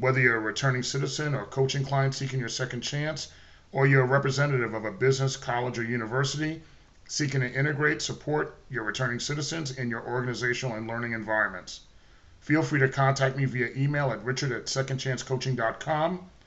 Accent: American